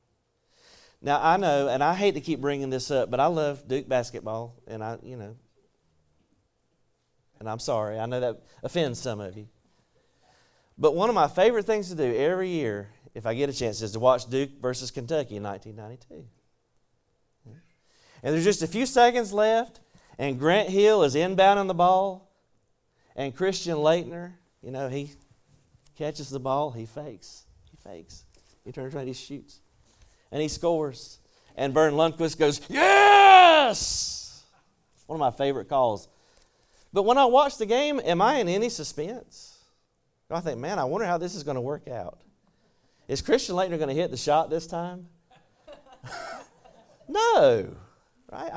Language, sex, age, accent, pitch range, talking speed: English, male, 40-59, American, 130-200 Hz, 165 wpm